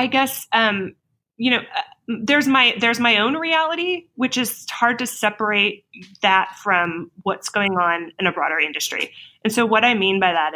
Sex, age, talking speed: female, 20-39, 190 wpm